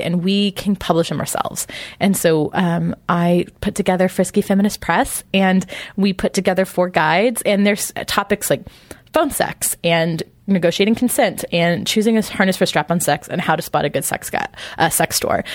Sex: female